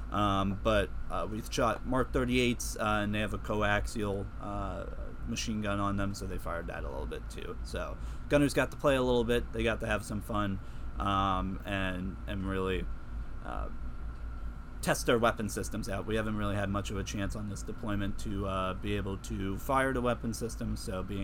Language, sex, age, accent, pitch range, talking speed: English, male, 30-49, American, 95-120 Hz, 205 wpm